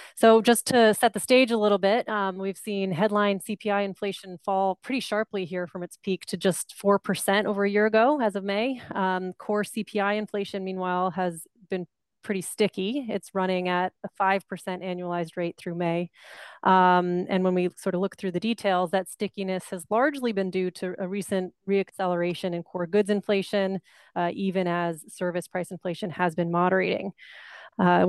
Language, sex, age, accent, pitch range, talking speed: English, female, 30-49, American, 180-200 Hz, 180 wpm